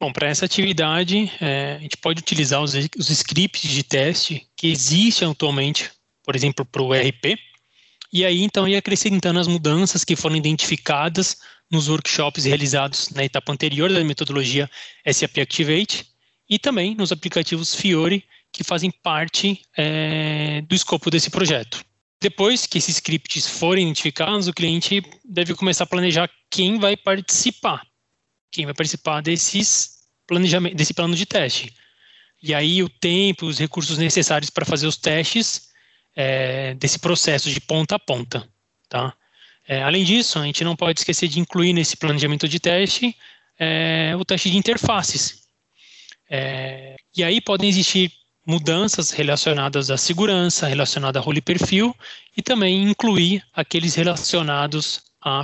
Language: English